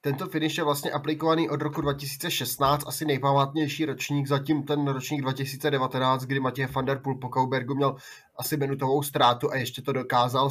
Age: 20-39